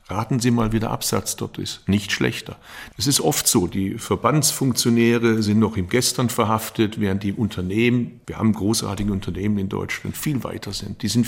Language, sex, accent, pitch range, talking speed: German, male, German, 105-125 Hz, 185 wpm